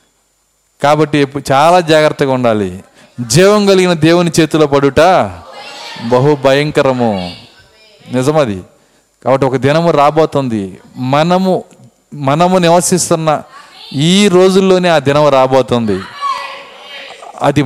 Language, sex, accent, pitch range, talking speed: Telugu, male, native, 140-195 Hz, 85 wpm